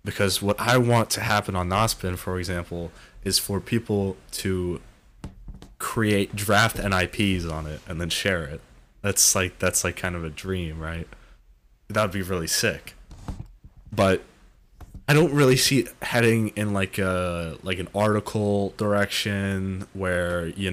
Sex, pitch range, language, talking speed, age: male, 85-100 Hz, English, 155 wpm, 20-39